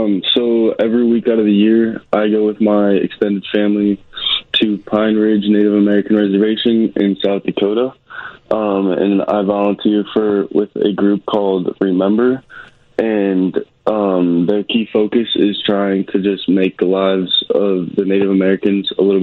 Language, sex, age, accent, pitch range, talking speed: English, male, 20-39, American, 95-105 Hz, 160 wpm